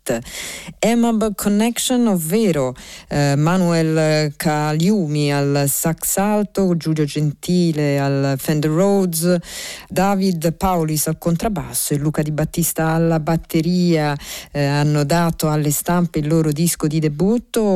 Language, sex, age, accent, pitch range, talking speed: Italian, female, 40-59, native, 145-180 Hz, 115 wpm